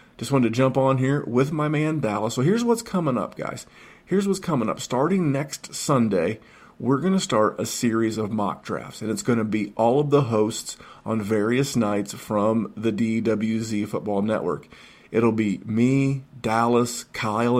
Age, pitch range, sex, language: 40-59, 110-130 Hz, male, English